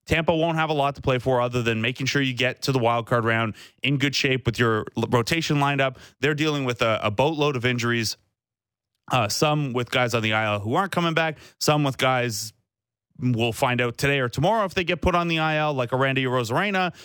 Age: 30-49